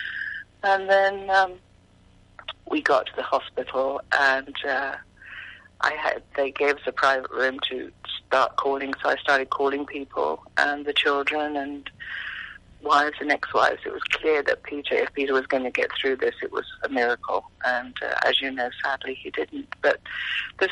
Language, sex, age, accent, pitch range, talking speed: English, female, 40-59, British, 135-195 Hz, 175 wpm